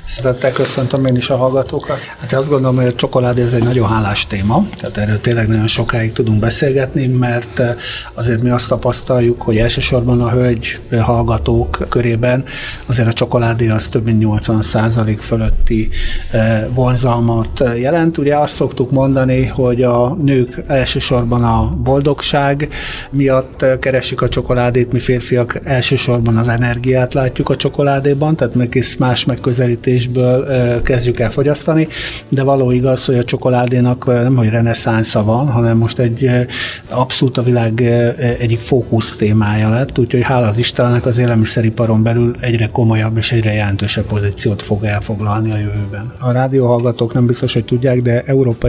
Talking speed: 150 wpm